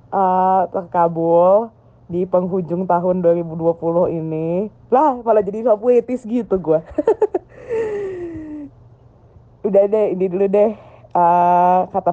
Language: English